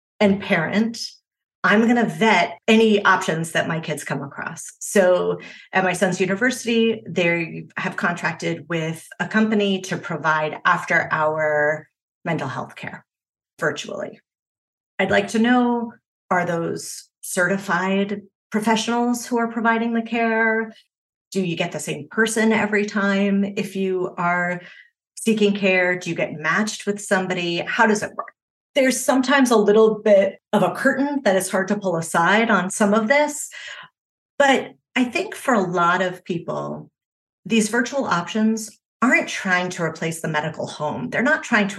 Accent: American